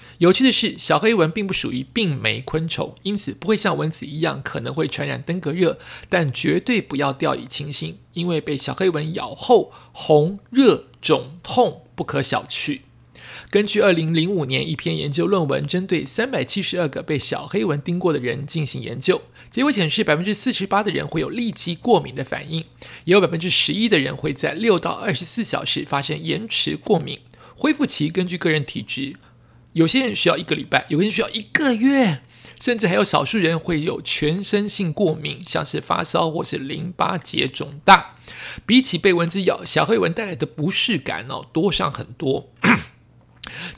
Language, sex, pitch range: Chinese, male, 150-200 Hz